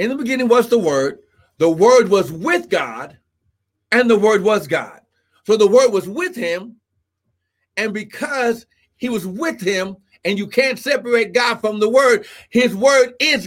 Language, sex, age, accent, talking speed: English, male, 60-79, American, 175 wpm